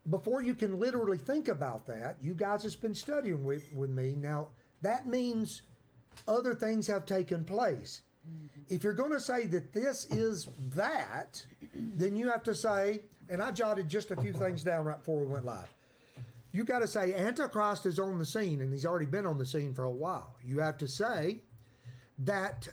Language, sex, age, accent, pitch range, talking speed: English, male, 50-69, American, 140-220 Hz, 195 wpm